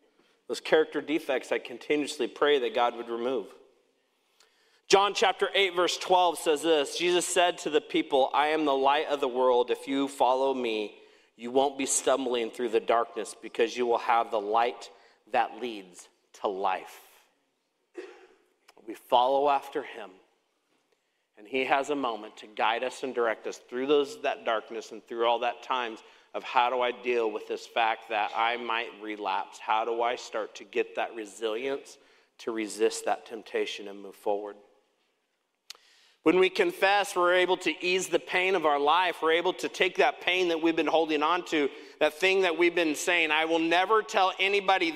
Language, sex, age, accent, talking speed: English, male, 40-59, American, 180 wpm